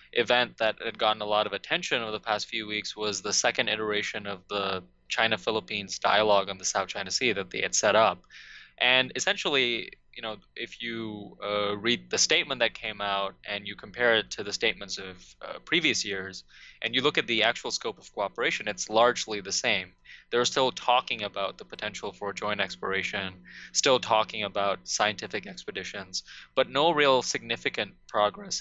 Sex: male